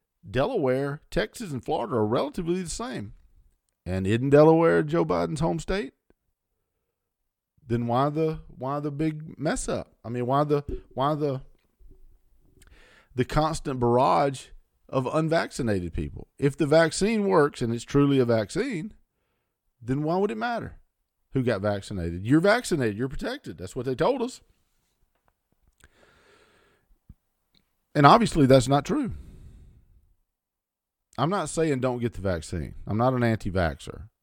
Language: English